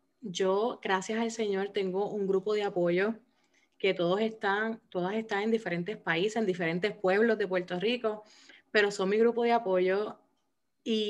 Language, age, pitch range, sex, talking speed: Spanish, 30-49, 195-235 Hz, female, 160 wpm